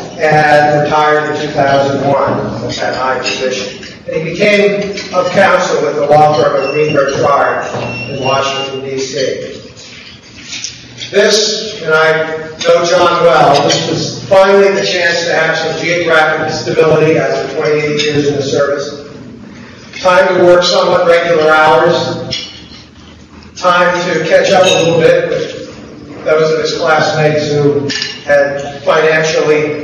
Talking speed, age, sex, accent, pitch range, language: 130 wpm, 40-59, male, American, 145-175 Hz, English